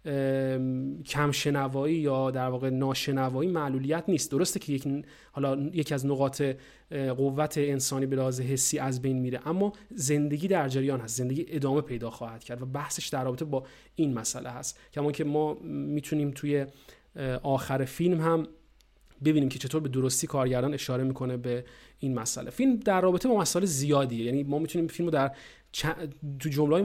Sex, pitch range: male, 135-170 Hz